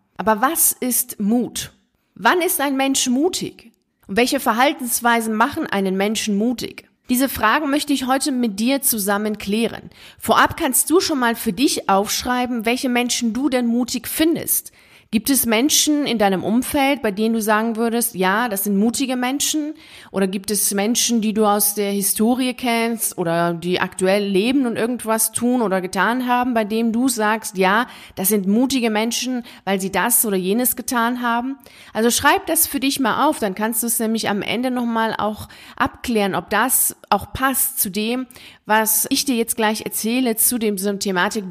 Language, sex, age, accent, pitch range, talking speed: German, female, 40-59, German, 200-250 Hz, 180 wpm